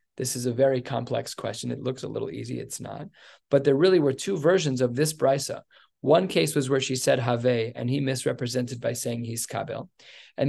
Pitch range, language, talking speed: 125-145 Hz, English, 210 wpm